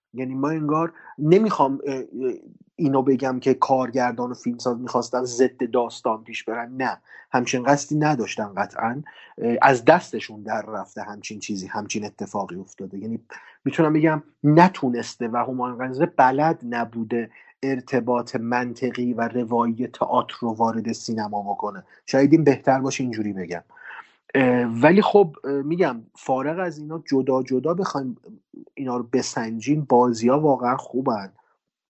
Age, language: 30-49, Persian